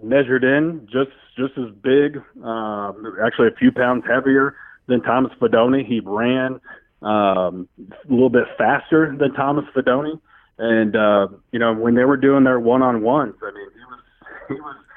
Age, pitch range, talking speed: 30-49, 110-130 Hz, 160 wpm